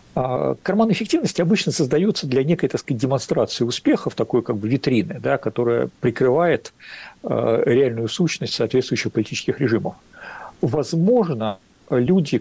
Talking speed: 110 wpm